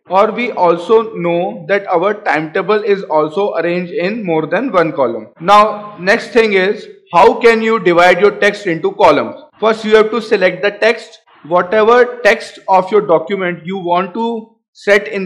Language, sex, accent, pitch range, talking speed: Hindi, male, native, 175-225 Hz, 175 wpm